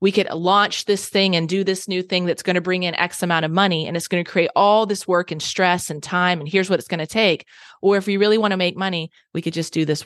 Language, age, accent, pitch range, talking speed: English, 20-39, American, 165-190 Hz, 305 wpm